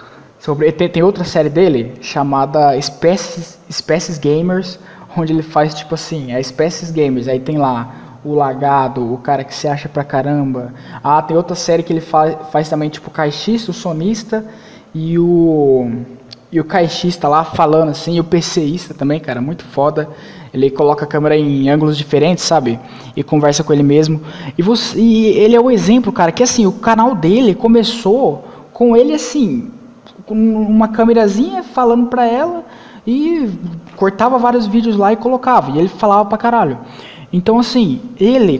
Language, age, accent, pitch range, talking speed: Portuguese, 20-39, Brazilian, 150-220 Hz, 170 wpm